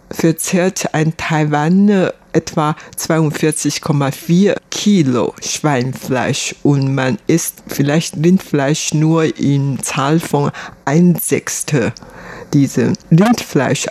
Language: German